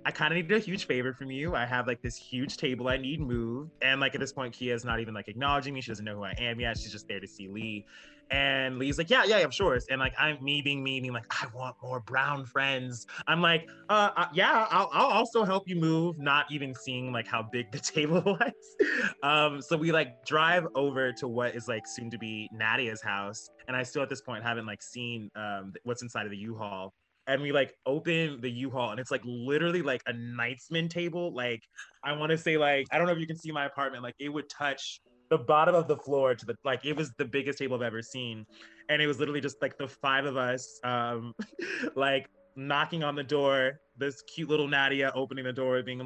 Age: 20-39